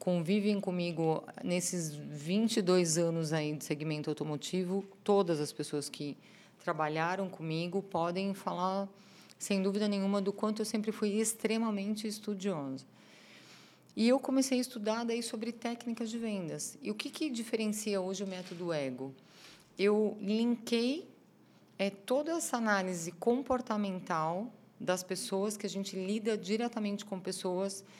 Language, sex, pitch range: Portuguese, female, 190-230 Hz